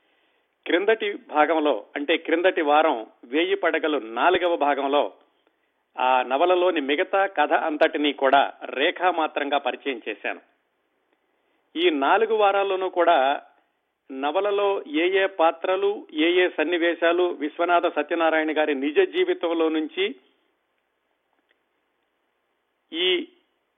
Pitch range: 150-200 Hz